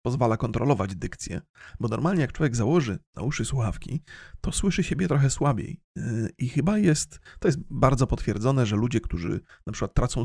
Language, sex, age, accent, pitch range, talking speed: Polish, male, 30-49, native, 115-155 Hz, 170 wpm